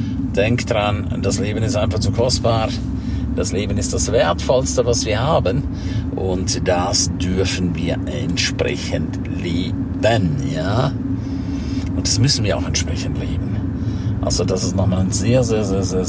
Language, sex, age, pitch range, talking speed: German, male, 50-69, 90-110 Hz, 145 wpm